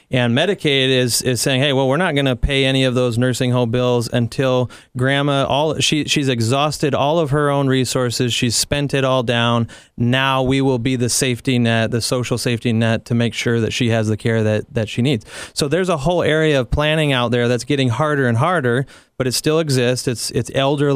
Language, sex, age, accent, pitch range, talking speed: English, male, 30-49, American, 120-135 Hz, 225 wpm